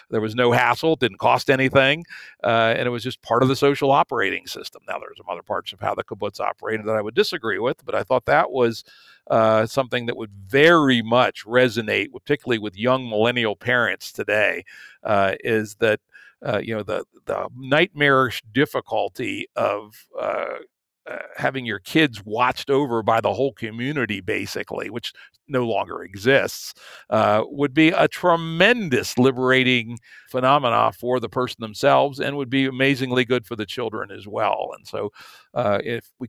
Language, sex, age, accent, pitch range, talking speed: English, male, 60-79, American, 115-140 Hz, 175 wpm